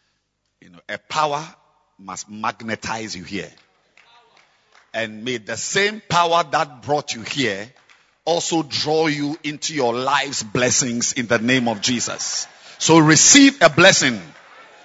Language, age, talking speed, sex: English, 50-69, 135 wpm, male